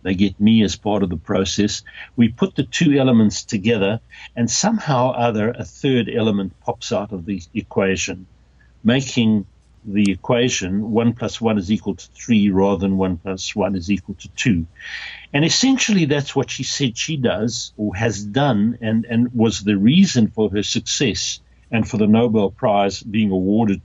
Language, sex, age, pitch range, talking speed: English, male, 60-79, 100-125 Hz, 180 wpm